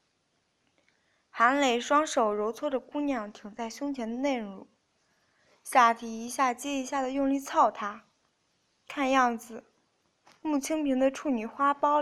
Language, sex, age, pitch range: Chinese, female, 20-39, 230-285 Hz